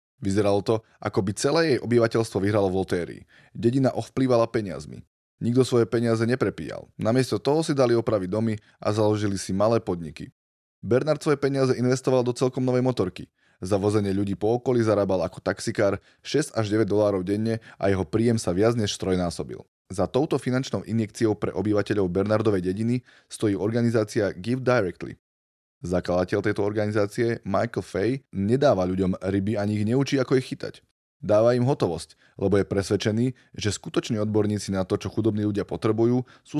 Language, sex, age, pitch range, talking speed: Slovak, male, 20-39, 100-125 Hz, 160 wpm